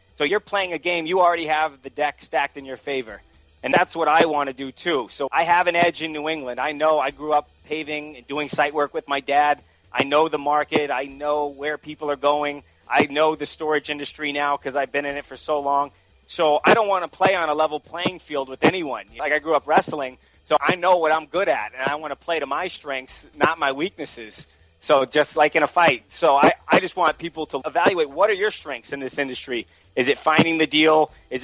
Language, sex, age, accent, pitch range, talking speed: English, male, 30-49, American, 140-160 Hz, 250 wpm